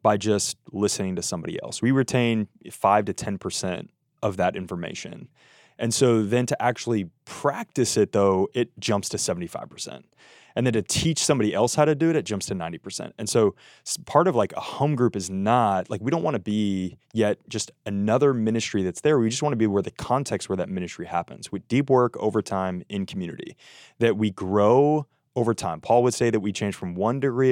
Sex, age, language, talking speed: male, 20-39, English, 200 wpm